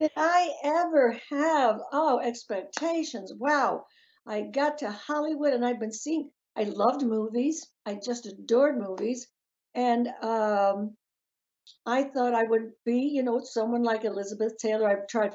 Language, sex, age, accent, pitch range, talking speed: English, female, 60-79, American, 205-265 Hz, 150 wpm